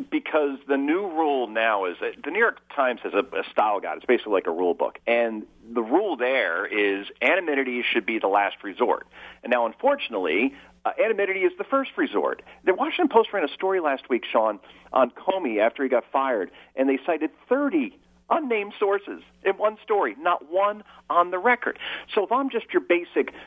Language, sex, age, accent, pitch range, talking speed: English, male, 40-59, American, 175-280 Hz, 195 wpm